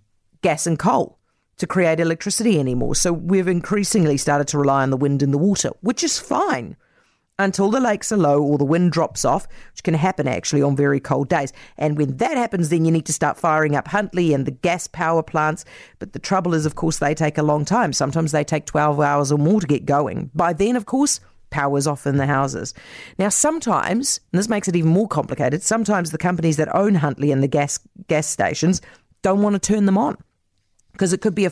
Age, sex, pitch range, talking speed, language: 40-59, female, 145-195 Hz, 225 wpm, English